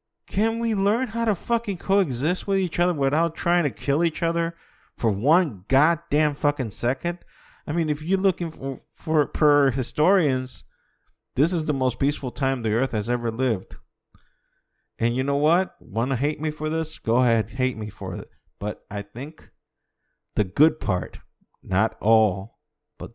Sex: male